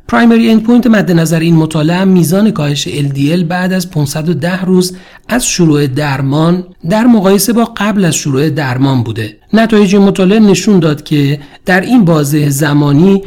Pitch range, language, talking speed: 140-185 Hz, Persian, 155 wpm